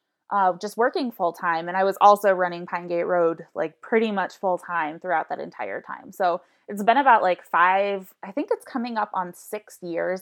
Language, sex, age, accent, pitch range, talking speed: English, female, 20-39, American, 180-220 Hz, 210 wpm